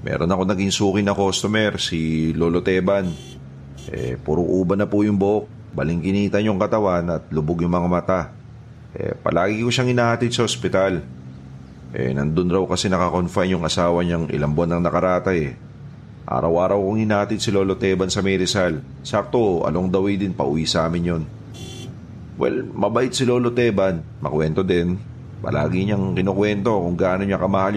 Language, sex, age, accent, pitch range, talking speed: Filipino, male, 40-59, native, 85-110 Hz, 160 wpm